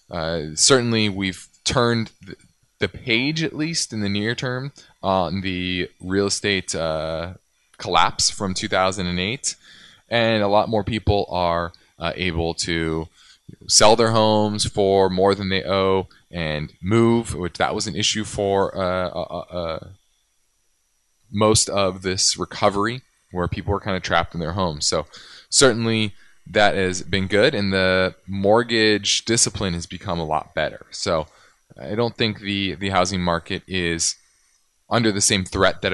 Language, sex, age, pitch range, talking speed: English, male, 20-39, 90-110 Hz, 150 wpm